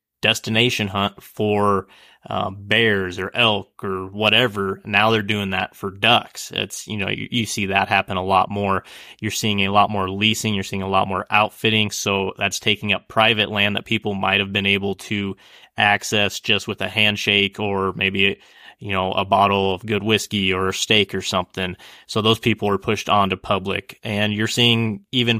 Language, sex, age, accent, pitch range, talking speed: English, male, 20-39, American, 100-110 Hz, 190 wpm